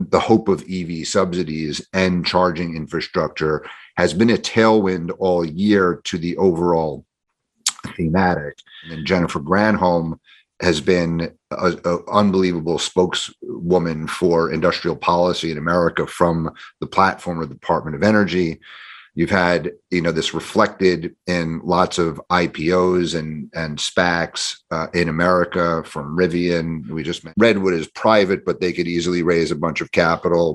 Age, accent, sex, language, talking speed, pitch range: 40-59, American, male, English, 140 wpm, 80-90 Hz